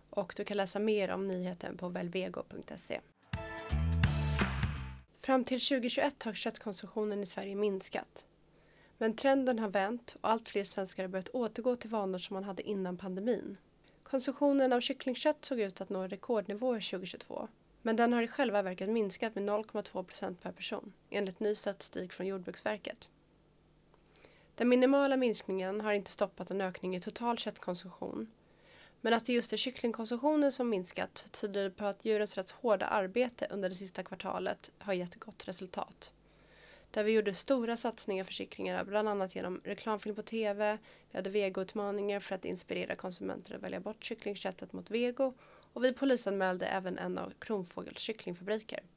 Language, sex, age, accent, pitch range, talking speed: Swedish, female, 20-39, native, 190-235 Hz, 160 wpm